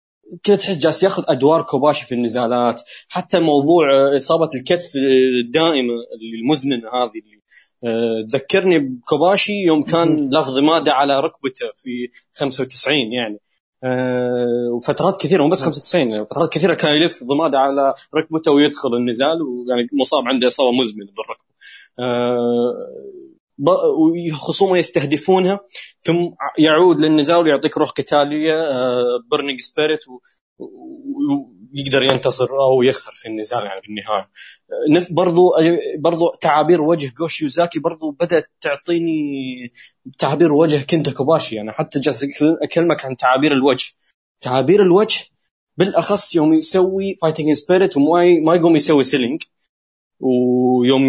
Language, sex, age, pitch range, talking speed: Arabic, male, 20-39, 130-170 Hz, 110 wpm